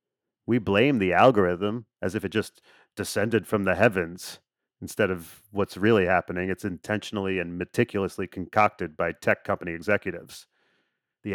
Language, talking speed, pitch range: English, 145 wpm, 95-120 Hz